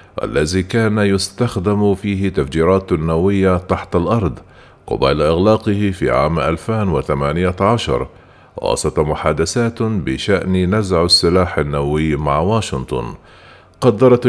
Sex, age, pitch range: male, 50-69, 90-105 Hz